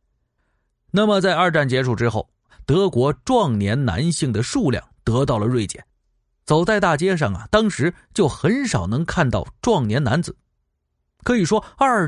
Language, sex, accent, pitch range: Chinese, male, native, 110-155 Hz